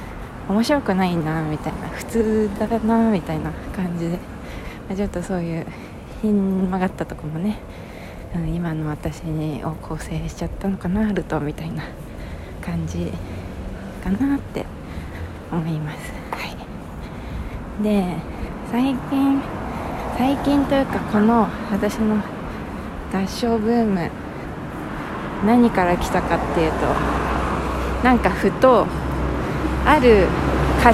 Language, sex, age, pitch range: Japanese, female, 20-39, 165-225 Hz